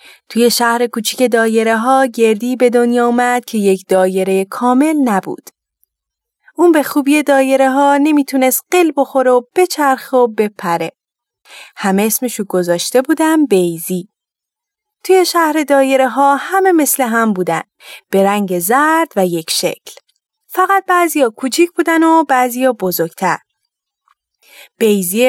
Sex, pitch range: female, 220-295 Hz